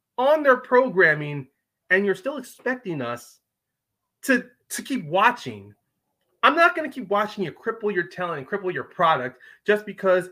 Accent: American